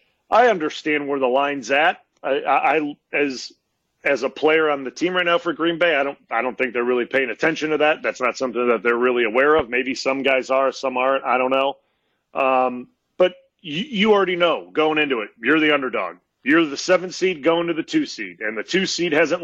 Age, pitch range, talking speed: 40-59, 140-190 Hz, 230 wpm